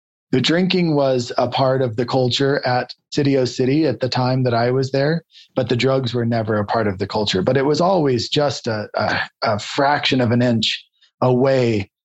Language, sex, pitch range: English, male, 120-145 Hz